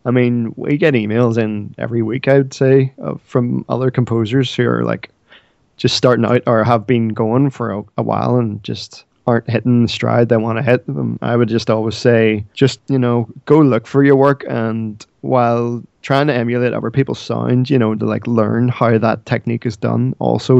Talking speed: 215 wpm